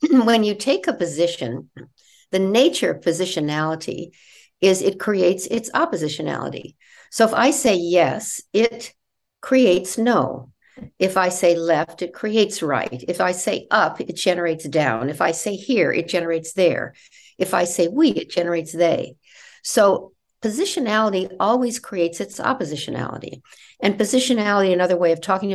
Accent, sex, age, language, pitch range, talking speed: American, female, 60-79, English, 160-205 Hz, 145 wpm